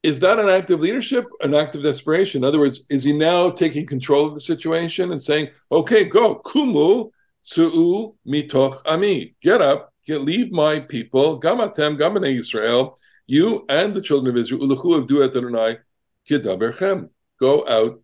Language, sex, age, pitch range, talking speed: English, male, 60-79, 130-190 Hz, 155 wpm